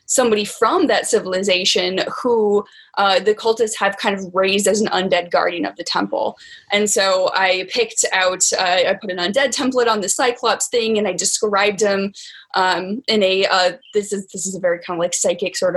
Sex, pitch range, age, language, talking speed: female, 185-220 Hz, 10-29, English, 200 wpm